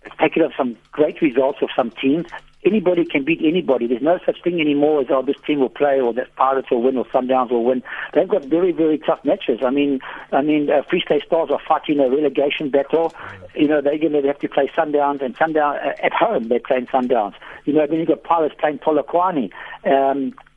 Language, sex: English, male